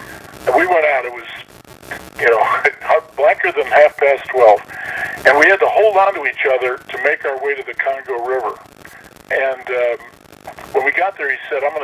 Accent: American